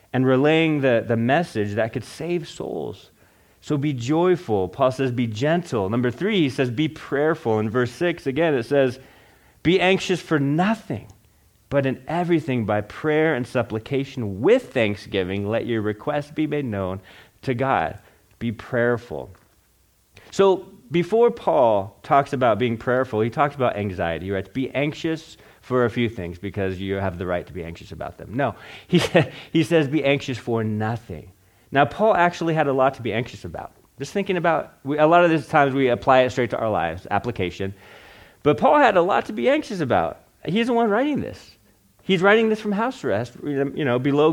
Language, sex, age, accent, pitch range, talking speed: English, male, 30-49, American, 105-155 Hz, 185 wpm